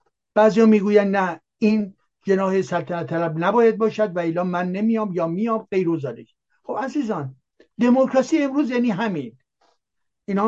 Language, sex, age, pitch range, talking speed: Persian, male, 60-79, 180-240 Hz, 130 wpm